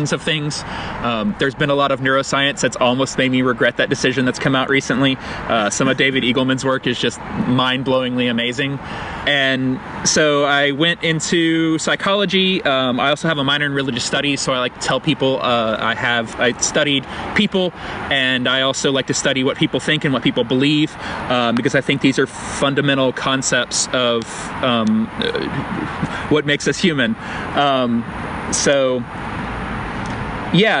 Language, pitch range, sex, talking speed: English, 130-150 Hz, male, 170 wpm